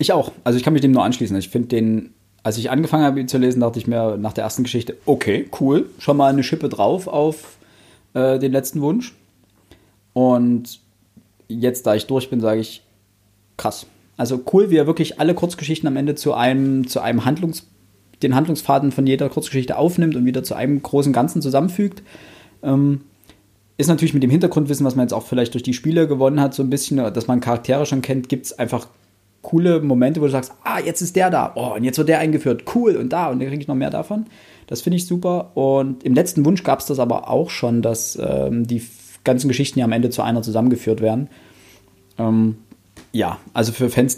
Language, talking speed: German, 215 wpm